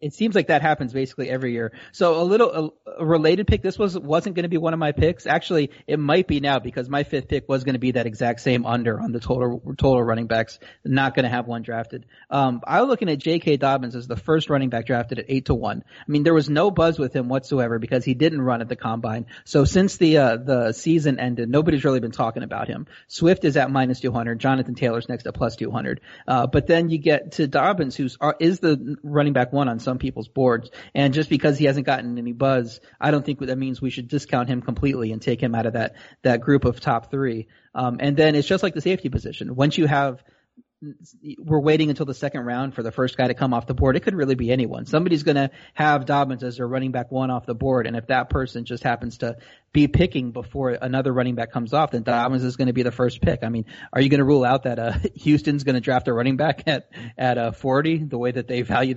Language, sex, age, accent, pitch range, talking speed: English, male, 30-49, American, 120-145 Hz, 255 wpm